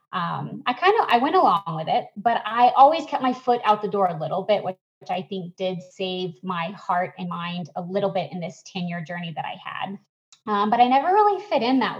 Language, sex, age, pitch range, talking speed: English, female, 20-39, 185-235 Hz, 240 wpm